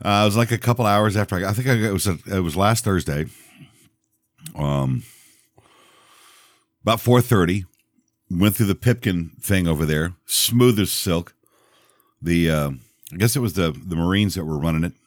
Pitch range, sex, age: 85-120 Hz, male, 50-69